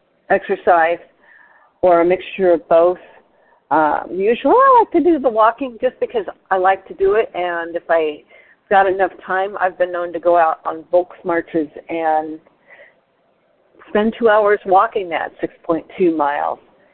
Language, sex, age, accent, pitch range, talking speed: English, female, 50-69, American, 165-225 Hz, 155 wpm